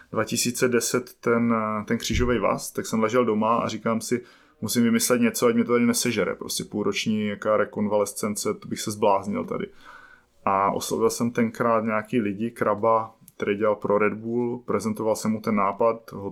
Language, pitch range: Czech, 110-125 Hz